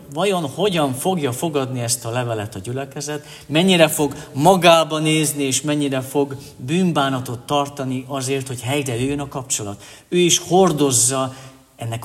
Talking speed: 135 wpm